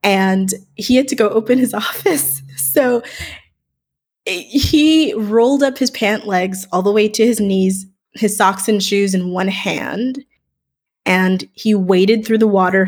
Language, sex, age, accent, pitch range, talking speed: English, female, 20-39, American, 185-245 Hz, 160 wpm